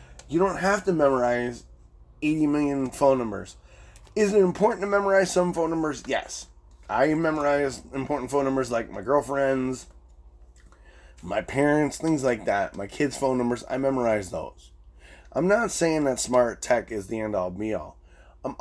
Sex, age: male, 20-39